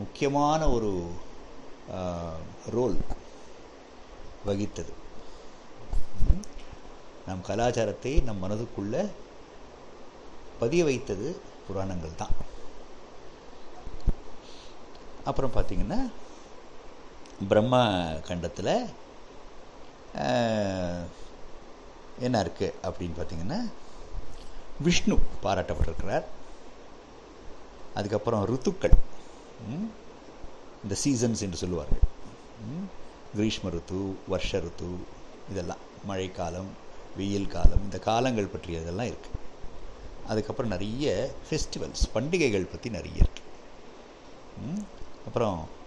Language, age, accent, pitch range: Tamil, 60-79, native, 85-115 Hz